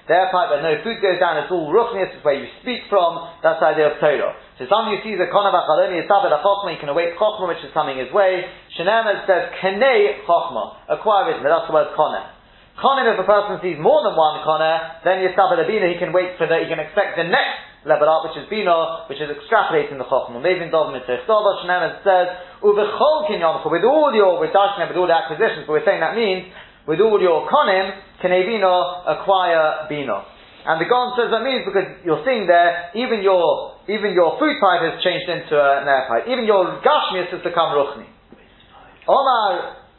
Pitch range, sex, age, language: 155-200 Hz, male, 30-49, English